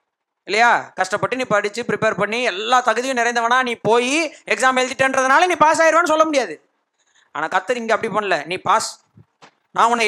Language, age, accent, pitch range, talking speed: Tamil, 30-49, native, 185-280 Hz, 160 wpm